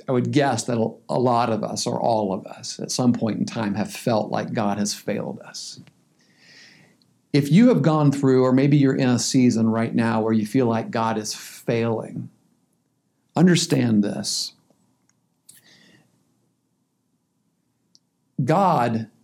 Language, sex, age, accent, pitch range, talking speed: English, male, 50-69, American, 115-155 Hz, 145 wpm